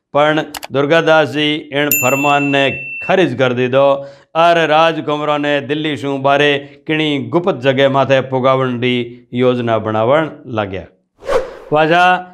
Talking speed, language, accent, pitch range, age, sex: 115 wpm, Hindi, native, 140-170 Hz, 60-79, male